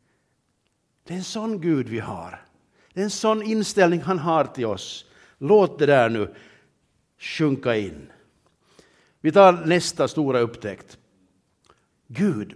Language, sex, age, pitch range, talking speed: Swedish, male, 60-79, 130-195 Hz, 135 wpm